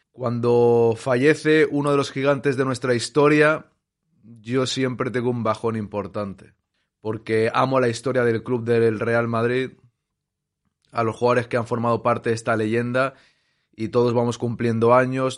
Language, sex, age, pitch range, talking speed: Spanish, male, 20-39, 115-130 Hz, 150 wpm